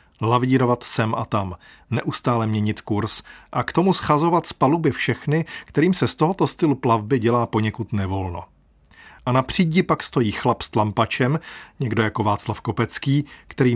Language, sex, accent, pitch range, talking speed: Czech, male, native, 110-140 Hz, 155 wpm